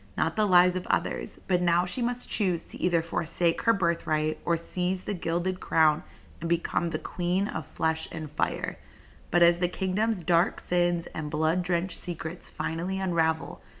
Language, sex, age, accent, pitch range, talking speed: English, female, 30-49, American, 160-185 Hz, 175 wpm